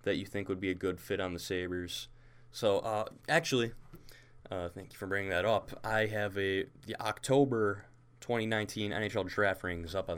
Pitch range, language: 95-115 Hz, English